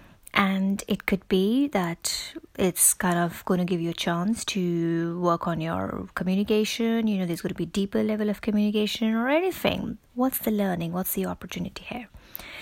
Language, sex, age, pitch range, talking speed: English, female, 20-39, 180-230 Hz, 180 wpm